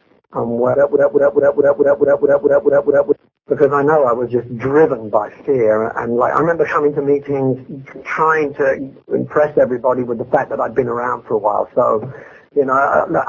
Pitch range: 130-210 Hz